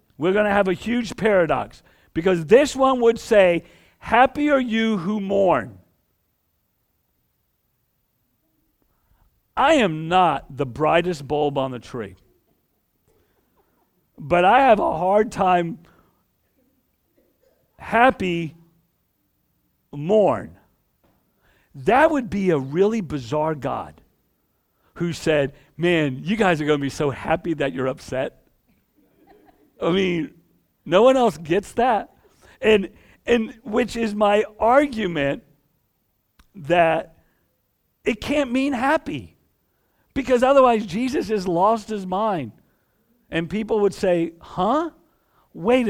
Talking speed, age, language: 110 wpm, 50-69, English